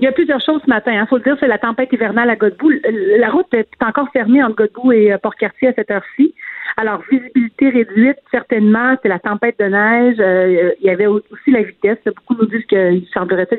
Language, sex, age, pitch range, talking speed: French, female, 40-59, 200-250 Hz, 210 wpm